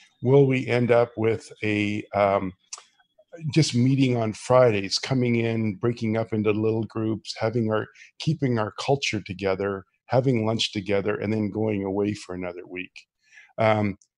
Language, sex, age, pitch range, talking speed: English, male, 50-69, 105-120 Hz, 150 wpm